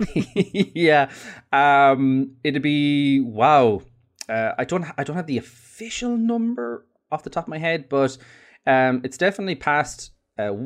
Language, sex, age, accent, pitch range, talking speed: English, male, 20-39, Irish, 100-135 Hz, 145 wpm